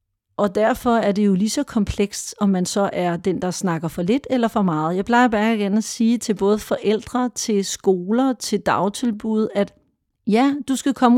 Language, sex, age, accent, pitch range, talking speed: Danish, female, 40-59, native, 205-255 Hz, 205 wpm